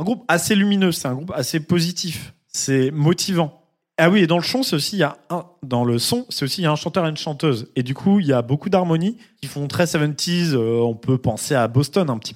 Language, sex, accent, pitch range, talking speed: French, male, French, 135-180 Hz, 270 wpm